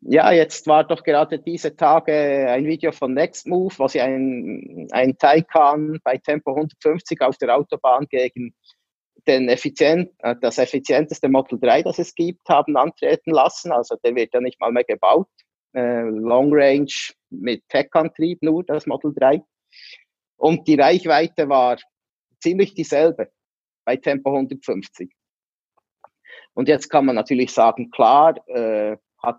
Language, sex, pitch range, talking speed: German, male, 130-165 Hz, 145 wpm